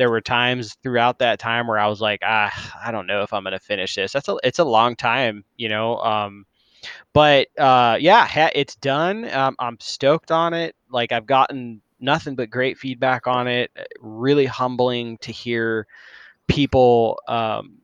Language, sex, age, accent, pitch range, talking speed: English, male, 20-39, American, 115-135 Hz, 185 wpm